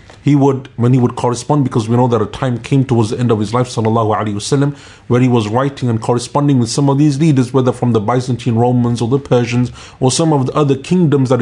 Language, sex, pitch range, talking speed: English, male, 120-145 Hz, 240 wpm